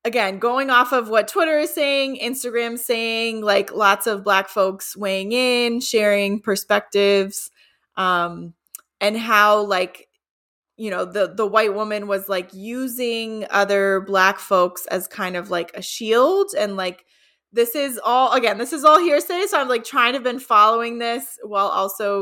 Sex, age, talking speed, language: female, 20-39, 165 wpm, English